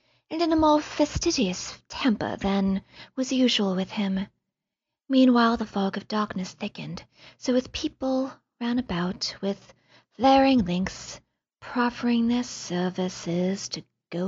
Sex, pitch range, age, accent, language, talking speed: female, 200-285 Hz, 40-59, American, English, 125 wpm